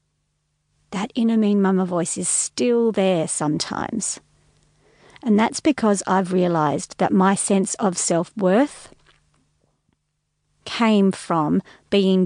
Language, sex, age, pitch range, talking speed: English, female, 40-59, 170-220 Hz, 110 wpm